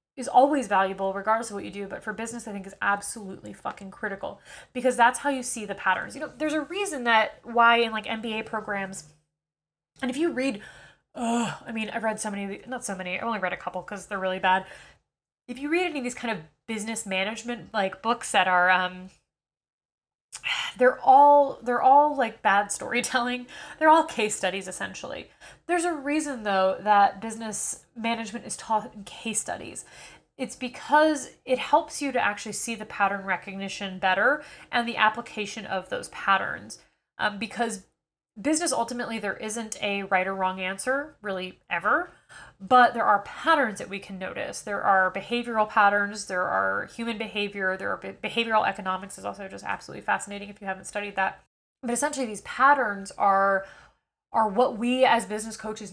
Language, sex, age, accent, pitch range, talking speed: English, female, 20-39, American, 195-245 Hz, 180 wpm